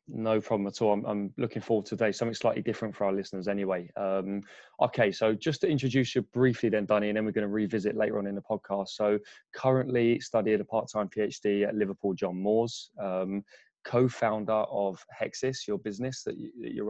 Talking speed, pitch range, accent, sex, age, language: 200 wpm, 100-110 Hz, British, male, 20-39, English